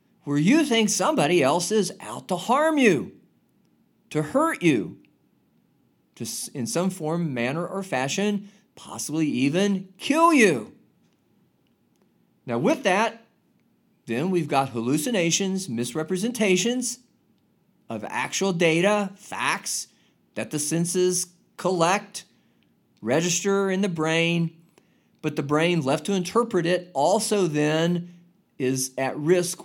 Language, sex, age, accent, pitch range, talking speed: English, male, 40-59, American, 145-205 Hz, 115 wpm